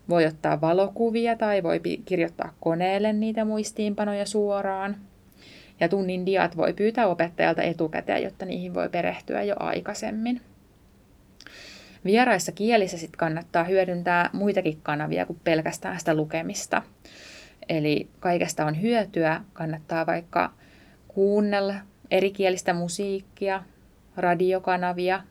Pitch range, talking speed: 165-200 Hz, 100 wpm